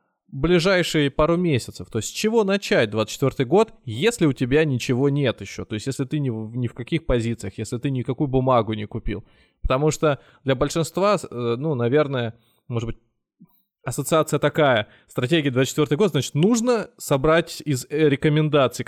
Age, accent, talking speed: 20-39, native, 160 wpm